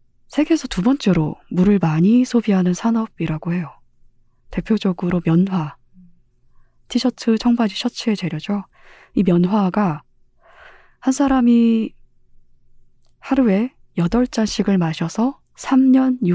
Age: 20-39